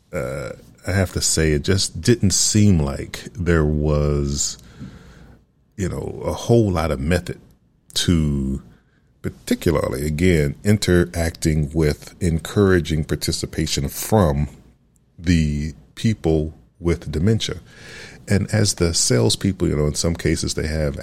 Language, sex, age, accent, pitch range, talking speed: English, male, 40-59, American, 75-90 Hz, 120 wpm